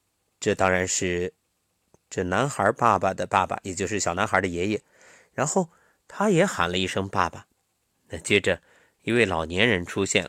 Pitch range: 90-145 Hz